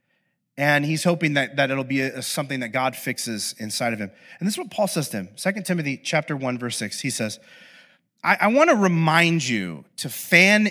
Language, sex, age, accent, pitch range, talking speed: English, male, 30-49, American, 135-185 Hz, 220 wpm